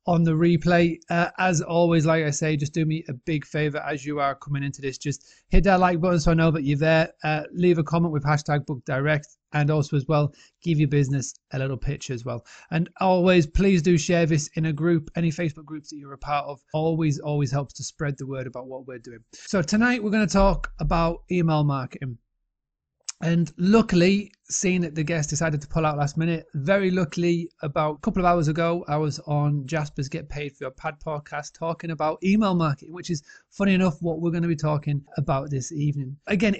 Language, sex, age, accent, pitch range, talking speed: English, male, 30-49, British, 145-175 Hz, 225 wpm